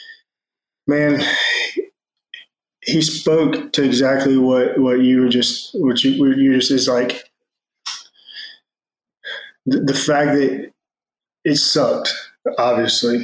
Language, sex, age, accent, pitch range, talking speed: English, male, 20-39, American, 125-140 Hz, 115 wpm